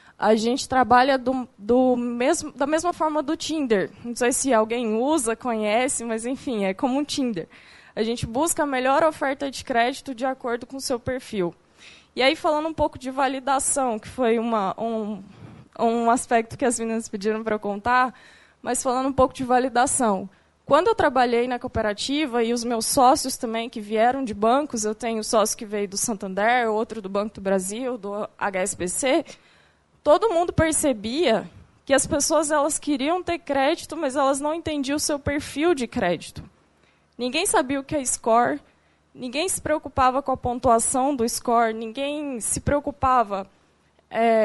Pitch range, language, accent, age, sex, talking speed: 230-290 Hz, Portuguese, Brazilian, 20-39, female, 175 wpm